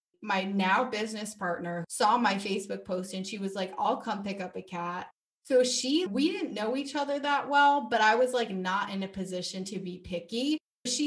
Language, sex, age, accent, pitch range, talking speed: English, female, 20-39, American, 185-235 Hz, 210 wpm